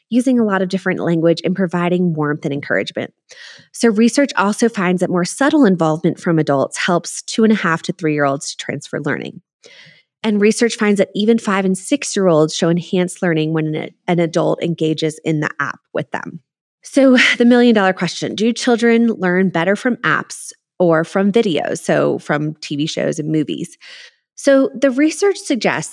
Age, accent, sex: 20-39, American, female